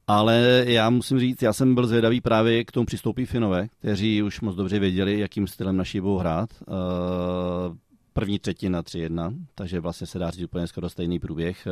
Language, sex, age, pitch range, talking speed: Czech, male, 30-49, 90-105 Hz, 180 wpm